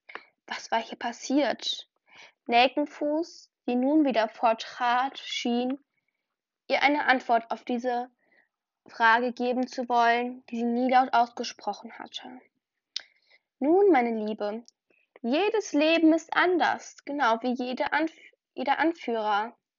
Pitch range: 230-280 Hz